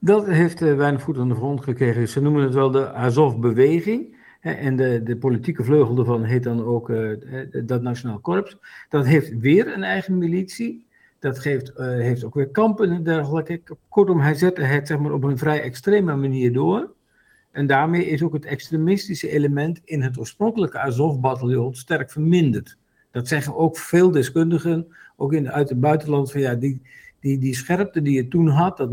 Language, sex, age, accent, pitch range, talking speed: Dutch, male, 50-69, Dutch, 130-165 Hz, 190 wpm